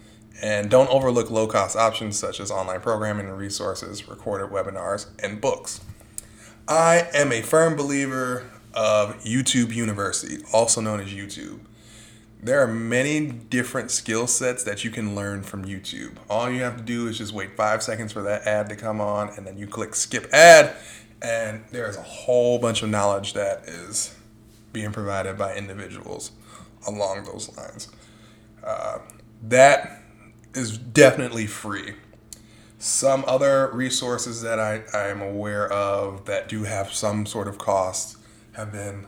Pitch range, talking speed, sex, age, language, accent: 105-115 Hz, 150 wpm, male, 20-39, English, American